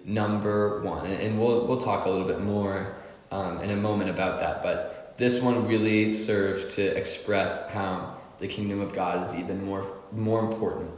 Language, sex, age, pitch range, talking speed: English, male, 10-29, 95-110 Hz, 185 wpm